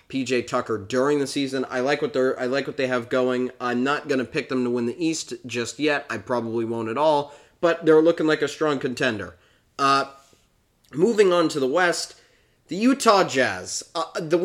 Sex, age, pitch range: male, 30-49, 115-155 Hz